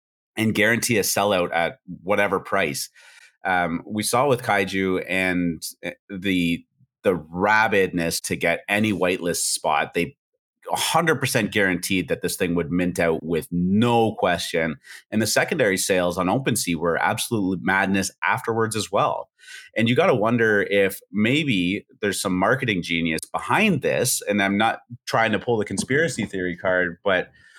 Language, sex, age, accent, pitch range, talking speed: English, male, 30-49, American, 90-110 Hz, 150 wpm